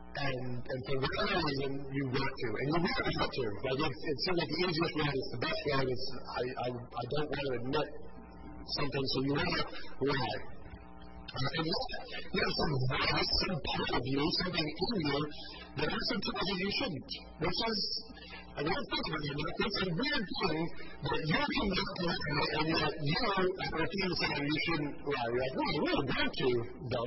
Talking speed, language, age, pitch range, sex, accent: 205 wpm, English, 40-59, 130-170 Hz, female, American